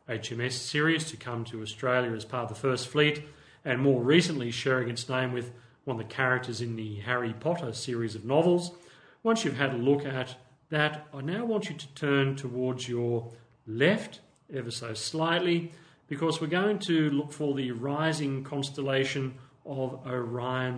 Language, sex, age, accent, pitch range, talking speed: English, male, 40-59, Australian, 120-150 Hz, 175 wpm